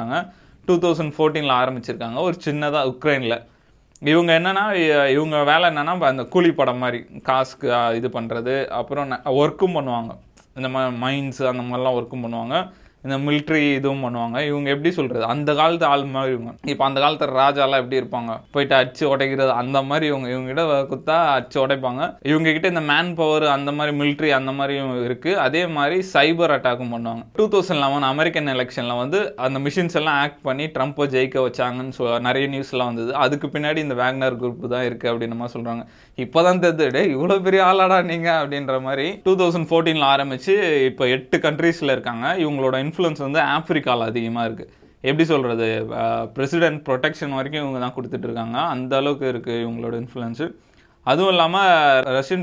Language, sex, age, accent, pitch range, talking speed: Tamil, male, 20-39, native, 125-155 Hz, 130 wpm